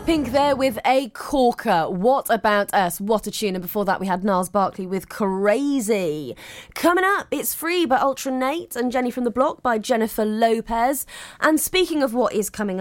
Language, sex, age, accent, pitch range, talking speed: English, female, 20-39, British, 185-245 Hz, 190 wpm